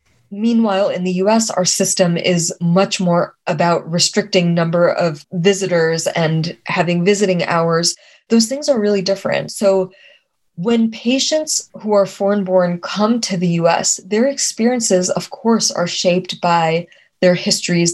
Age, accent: 20-39, American